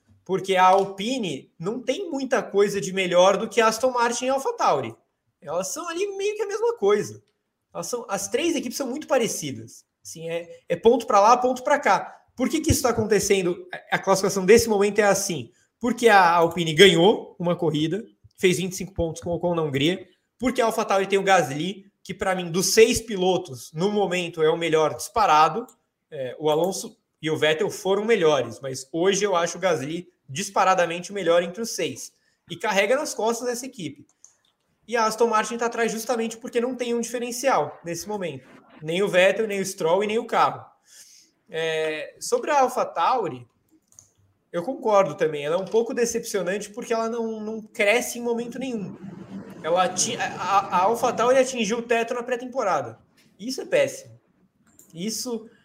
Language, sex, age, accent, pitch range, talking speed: Portuguese, male, 20-39, Brazilian, 175-235 Hz, 185 wpm